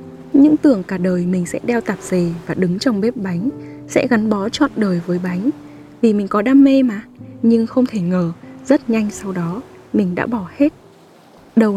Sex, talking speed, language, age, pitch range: female, 205 wpm, Vietnamese, 10-29, 185-240 Hz